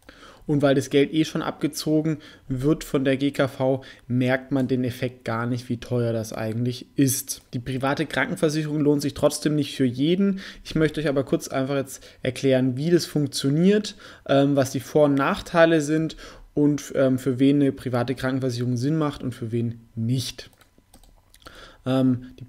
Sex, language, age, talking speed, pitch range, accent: male, German, 20-39, 165 wpm, 125-145 Hz, German